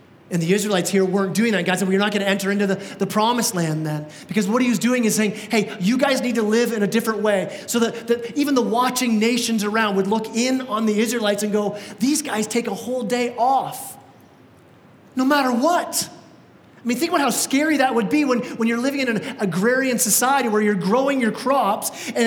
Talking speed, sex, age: 230 wpm, male, 30-49